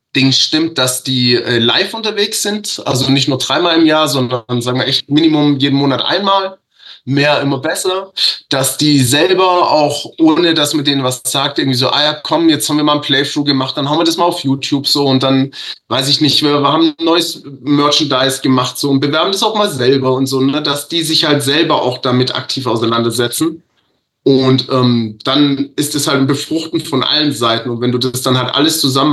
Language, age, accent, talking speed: German, 20-39, German, 210 wpm